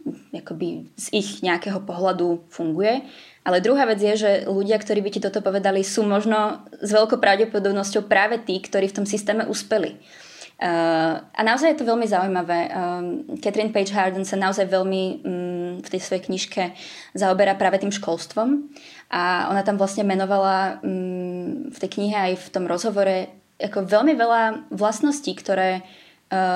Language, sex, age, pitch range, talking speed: Czech, female, 20-39, 180-215 Hz, 160 wpm